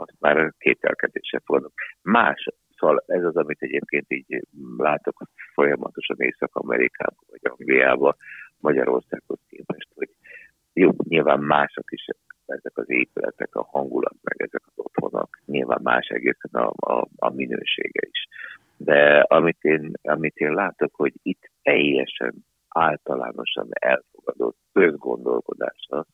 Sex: male